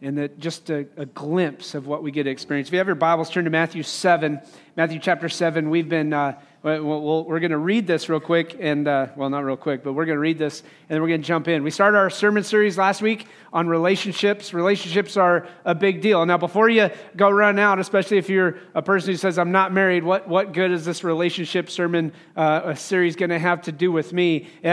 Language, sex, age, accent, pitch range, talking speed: English, male, 40-59, American, 160-195 Hz, 245 wpm